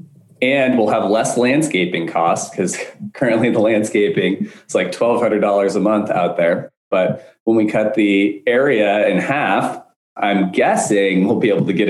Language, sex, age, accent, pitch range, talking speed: English, male, 20-39, American, 95-110 Hz, 160 wpm